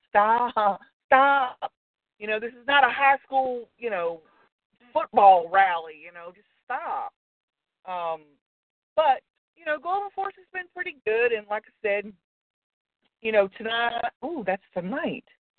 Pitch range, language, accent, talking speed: 185-260 Hz, English, American, 145 wpm